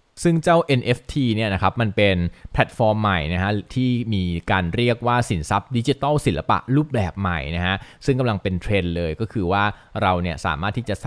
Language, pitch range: Thai, 95-125 Hz